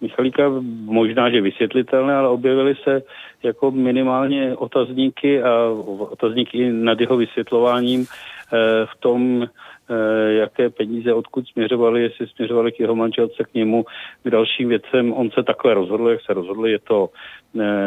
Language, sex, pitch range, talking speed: Czech, male, 105-120 Hz, 145 wpm